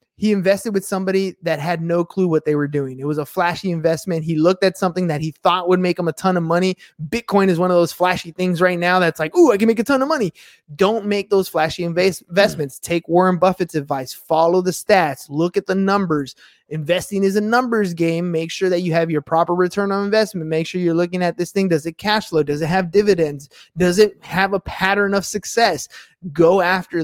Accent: American